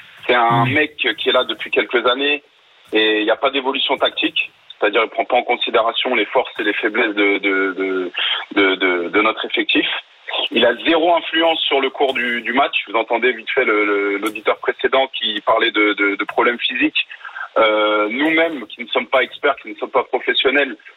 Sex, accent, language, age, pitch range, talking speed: male, French, French, 30-49, 105-140 Hz, 210 wpm